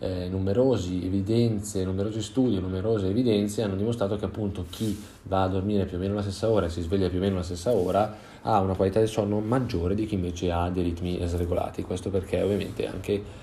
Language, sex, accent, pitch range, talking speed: Italian, male, native, 90-110 Hz, 210 wpm